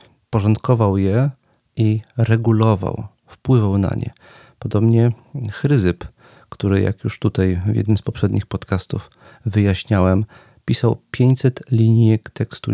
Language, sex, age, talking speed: Polish, male, 40-59, 110 wpm